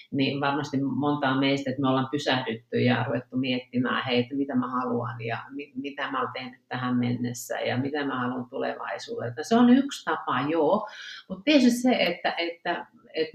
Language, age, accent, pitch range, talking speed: Finnish, 40-59, native, 135-185 Hz, 175 wpm